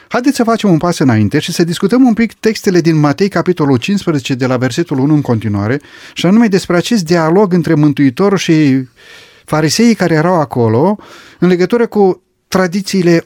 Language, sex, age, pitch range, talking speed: Romanian, male, 30-49, 125-195 Hz, 170 wpm